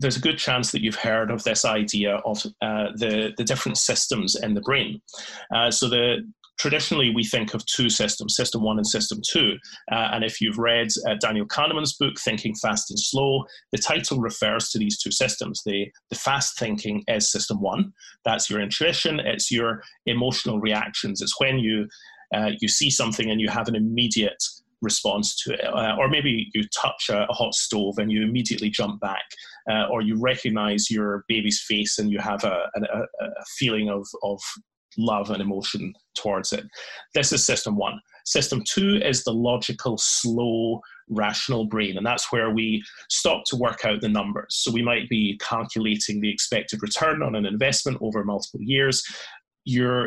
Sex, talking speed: male, 180 wpm